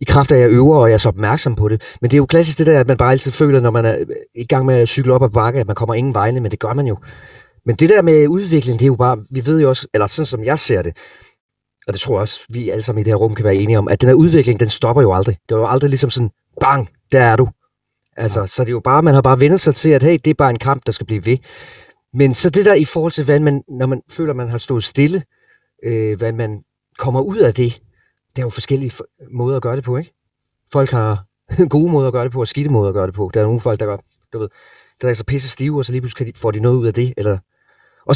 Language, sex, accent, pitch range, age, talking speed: Danish, male, native, 110-140 Hz, 30-49, 305 wpm